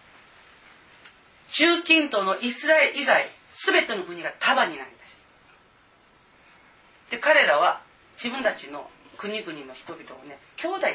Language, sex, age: Japanese, female, 40-59